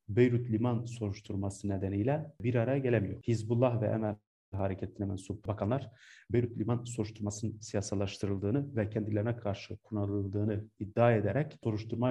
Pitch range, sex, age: 105-125 Hz, male, 40-59